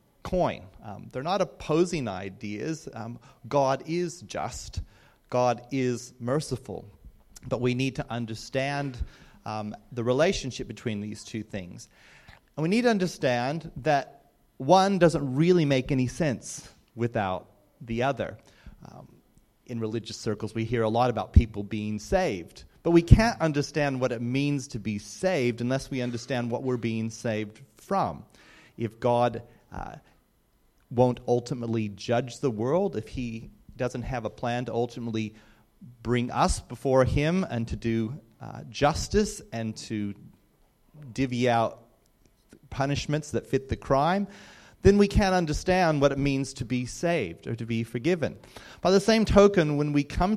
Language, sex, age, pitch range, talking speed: English, male, 30-49, 115-140 Hz, 150 wpm